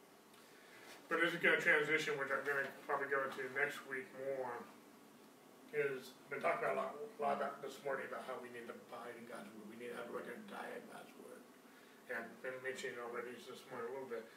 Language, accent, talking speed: English, American, 240 wpm